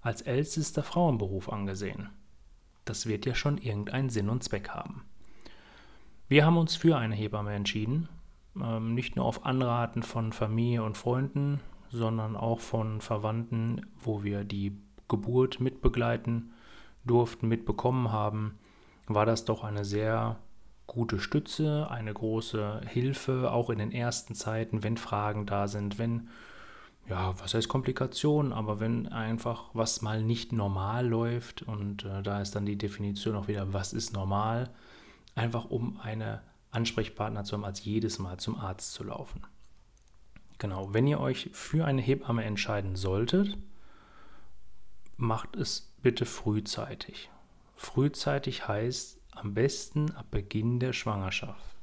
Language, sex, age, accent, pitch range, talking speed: German, male, 30-49, German, 105-125 Hz, 135 wpm